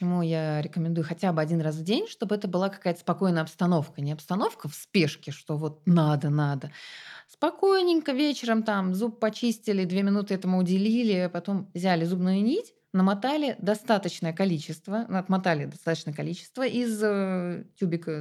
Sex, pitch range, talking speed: female, 160-220 Hz, 140 wpm